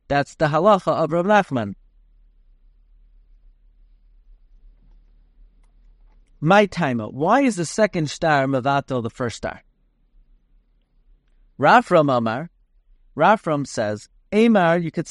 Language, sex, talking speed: English, male, 100 wpm